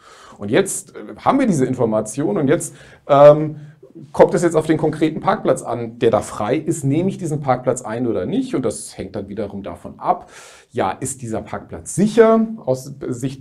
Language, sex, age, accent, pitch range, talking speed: German, male, 40-59, German, 110-150 Hz, 190 wpm